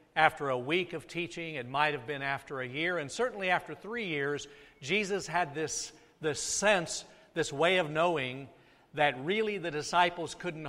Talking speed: 175 wpm